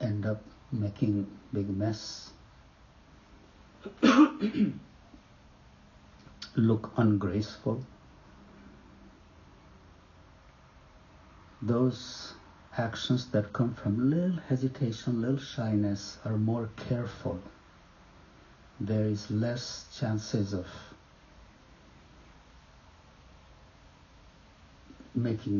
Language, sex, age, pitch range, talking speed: English, male, 60-79, 95-120 Hz, 60 wpm